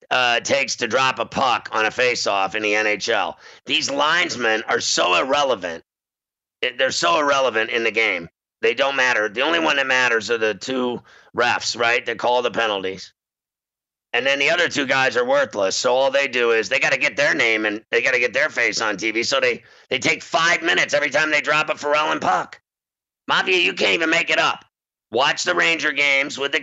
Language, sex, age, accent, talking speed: English, male, 50-69, American, 215 wpm